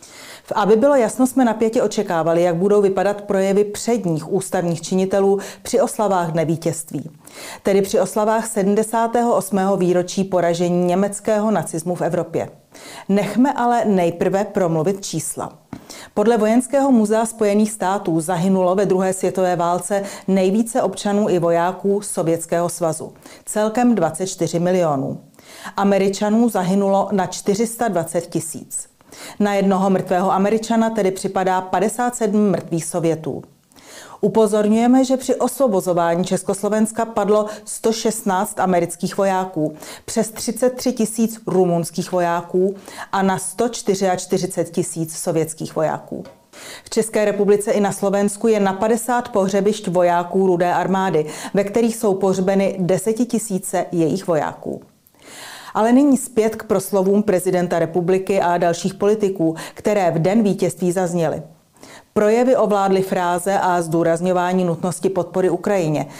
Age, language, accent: 40-59, Czech, native